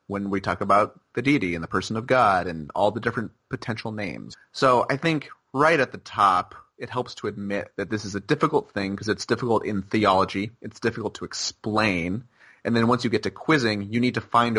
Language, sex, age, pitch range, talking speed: English, male, 30-49, 100-125 Hz, 220 wpm